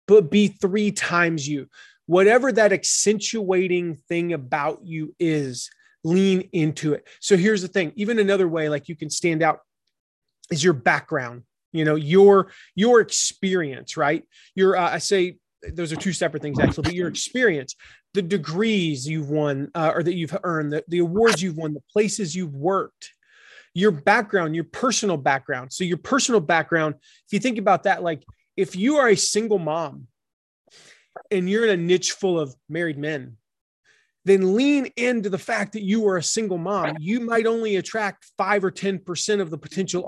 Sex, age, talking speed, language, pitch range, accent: male, 30-49, 175 wpm, English, 160-210 Hz, American